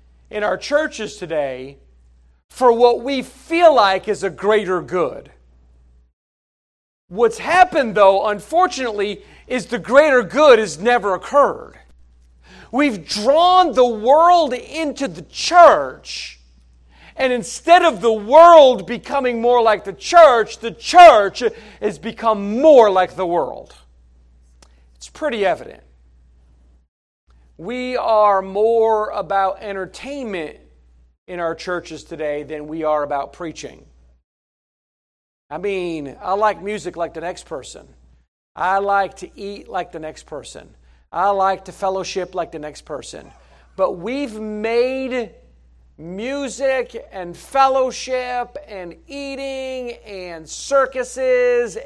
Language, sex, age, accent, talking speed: English, male, 40-59, American, 115 wpm